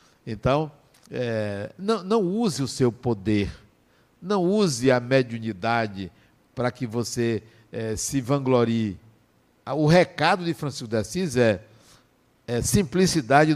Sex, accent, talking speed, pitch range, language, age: male, Brazilian, 110 wpm, 125-195 Hz, Portuguese, 60-79